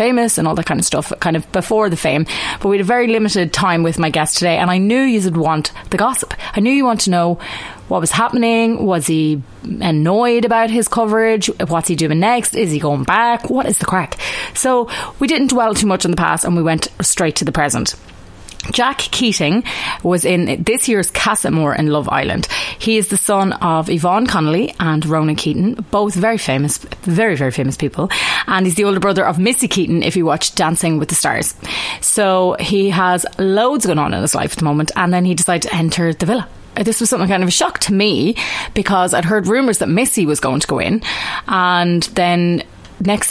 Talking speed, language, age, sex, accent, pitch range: 220 wpm, English, 30-49, female, Irish, 165-215 Hz